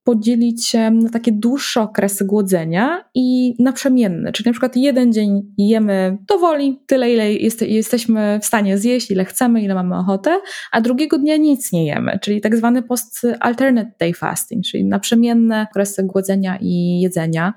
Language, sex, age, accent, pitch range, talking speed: Polish, female, 20-39, native, 205-240 Hz, 165 wpm